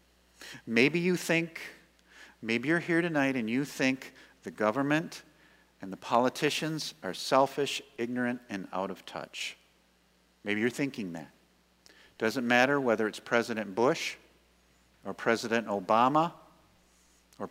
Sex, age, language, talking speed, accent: male, 50-69, English, 125 wpm, American